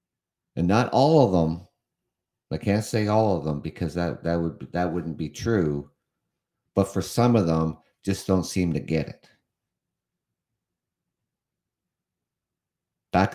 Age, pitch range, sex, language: 50-69, 80-100 Hz, male, English